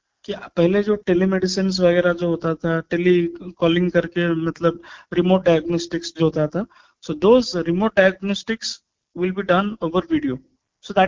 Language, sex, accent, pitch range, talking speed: Hindi, male, native, 175-210 Hz, 80 wpm